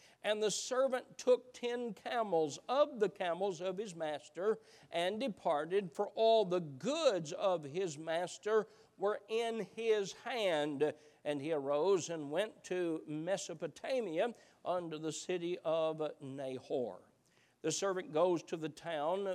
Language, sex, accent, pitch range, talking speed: English, male, American, 155-205 Hz, 135 wpm